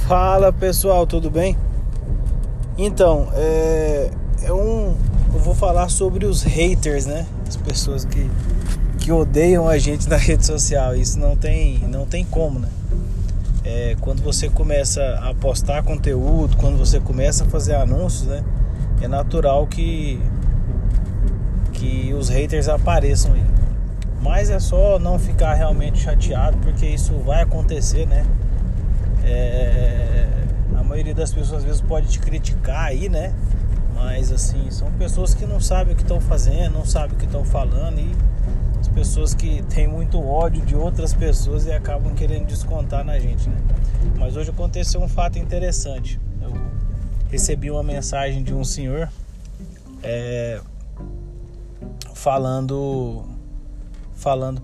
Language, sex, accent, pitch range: Portuguese, male, Brazilian, 95-135 Hz